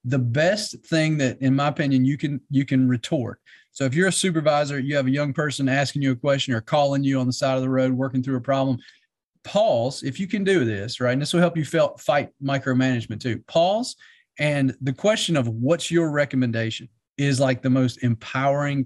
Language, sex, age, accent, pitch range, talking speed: English, male, 40-59, American, 125-155 Hz, 215 wpm